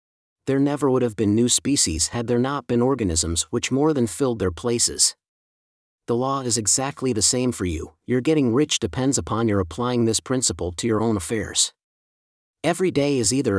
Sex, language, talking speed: male, English, 190 wpm